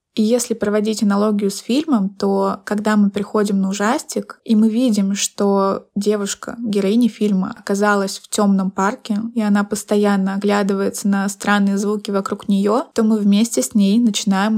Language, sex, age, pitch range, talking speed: Russian, female, 20-39, 200-230 Hz, 155 wpm